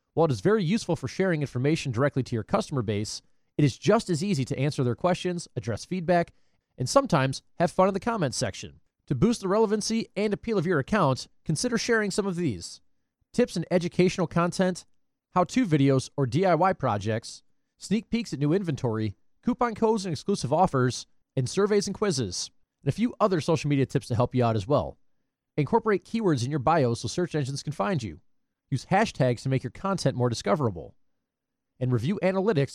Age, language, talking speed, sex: 30-49, English, 190 wpm, male